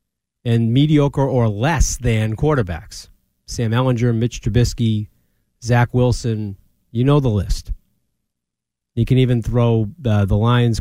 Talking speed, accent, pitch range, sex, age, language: 130 wpm, American, 115-155 Hz, male, 30-49, English